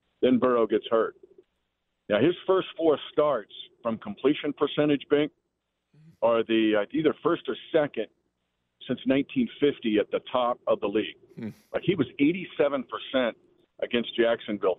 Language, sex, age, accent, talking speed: English, male, 50-69, American, 140 wpm